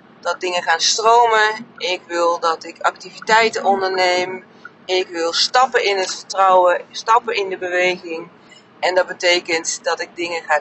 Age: 30-49